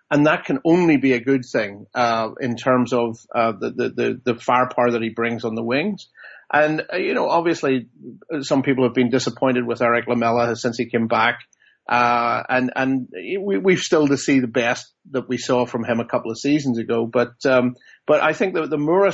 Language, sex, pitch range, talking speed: English, male, 125-150 Hz, 210 wpm